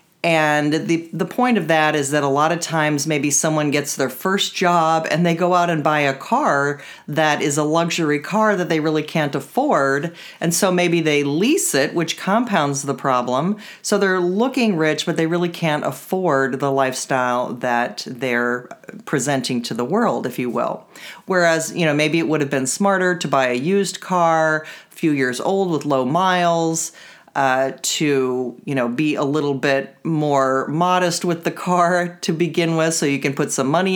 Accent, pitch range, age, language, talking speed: American, 140-180 Hz, 40-59, English, 195 wpm